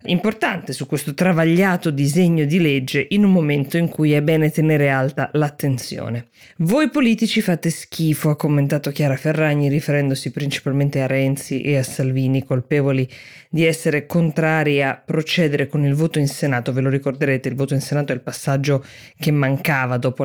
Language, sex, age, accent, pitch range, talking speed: Italian, female, 20-39, native, 140-170 Hz, 165 wpm